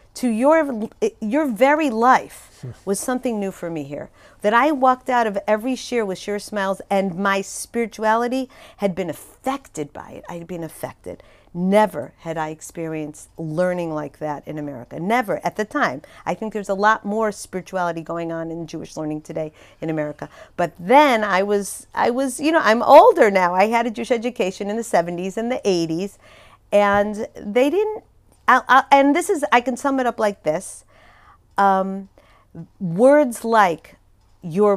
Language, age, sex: English, 50-69, female